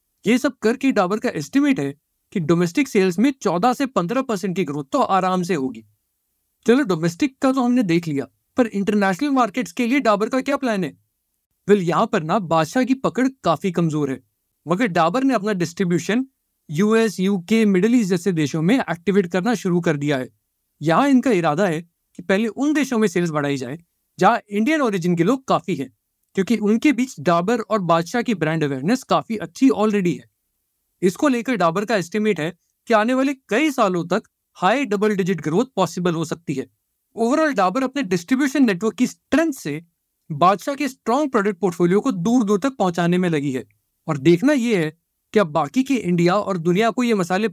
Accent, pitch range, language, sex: native, 165-240 Hz, Hindi, male